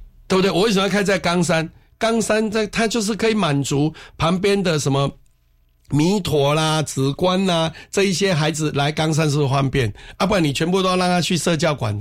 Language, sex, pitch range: Chinese, male, 130-175 Hz